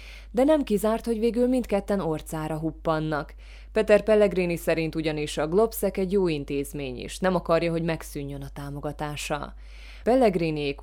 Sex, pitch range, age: female, 150-190 Hz, 20-39